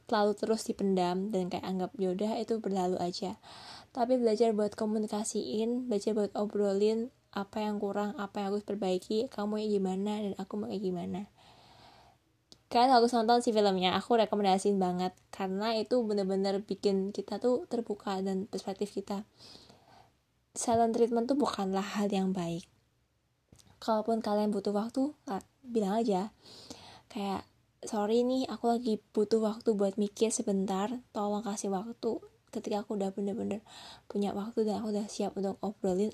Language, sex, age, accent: Indonesian, female, 10-29, native